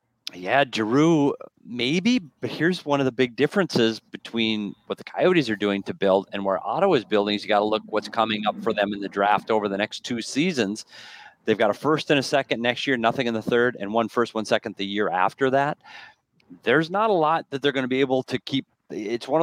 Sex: male